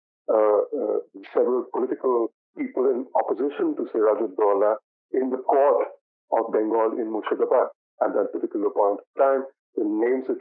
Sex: male